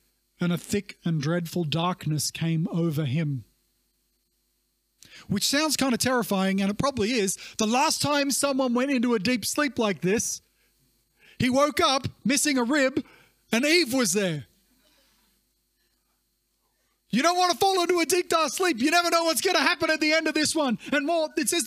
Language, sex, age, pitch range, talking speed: English, male, 30-49, 195-270 Hz, 185 wpm